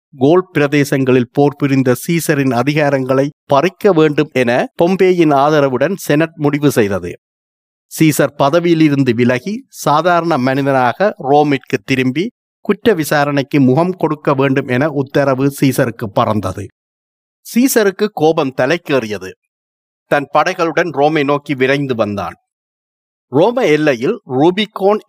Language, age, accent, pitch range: Tamil, 50-69, native, 125-160 Hz